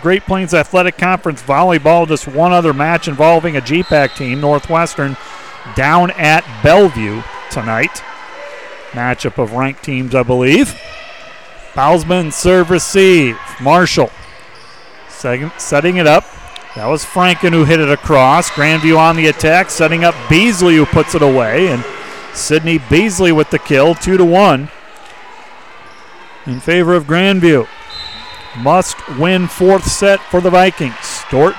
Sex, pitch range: male, 145-180 Hz